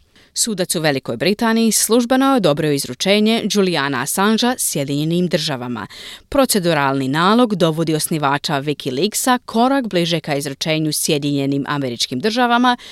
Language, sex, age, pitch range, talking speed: Croatian, female, 30-49, 145-220 Hz, 105 wpm